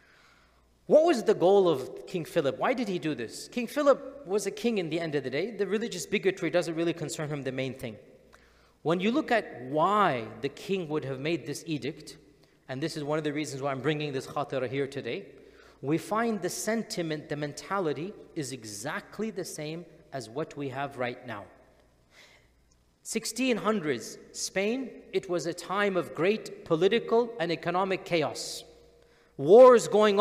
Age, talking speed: 40-59, 180 wpm